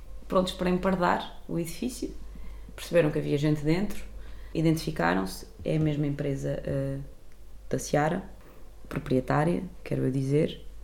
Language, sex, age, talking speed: English, female, 20-39, 120 wpm